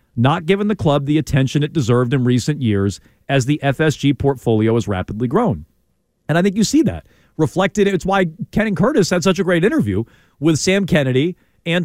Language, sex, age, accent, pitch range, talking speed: English, male, 40-59, American, 120-180 Hz, 195 wpm